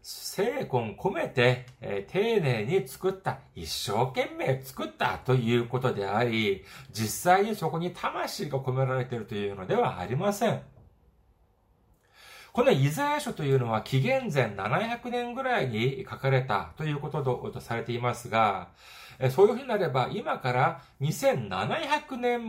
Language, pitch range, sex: Japanese, 115-180 Hz, male